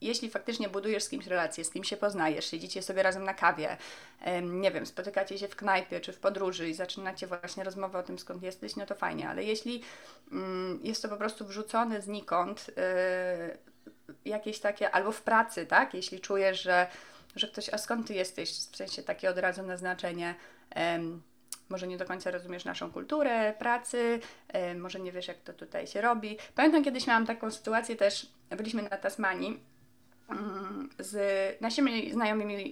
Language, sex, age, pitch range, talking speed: Polish, female, 20-39, 185-235 Hz, 170 wpm